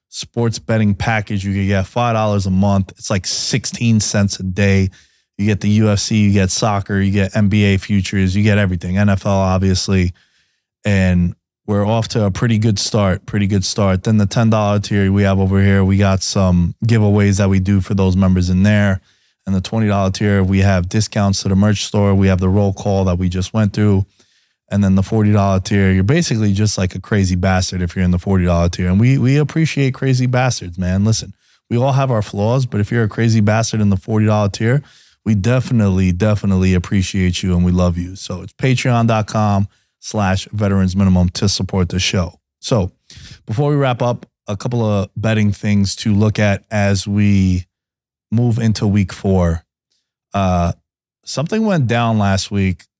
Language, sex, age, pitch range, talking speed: English, male, 20-39, 95-110 Hz, 190 wpm